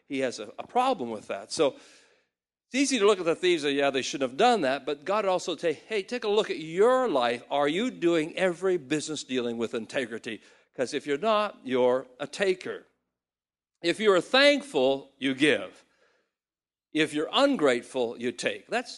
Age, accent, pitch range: 60-79, American, 135-210 Hz